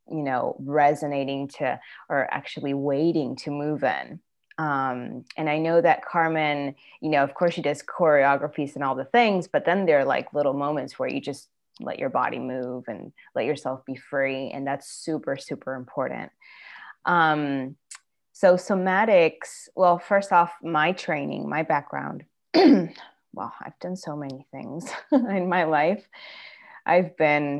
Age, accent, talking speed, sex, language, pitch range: 20-39, American, 155 wpm, female, English, 135-160 Hz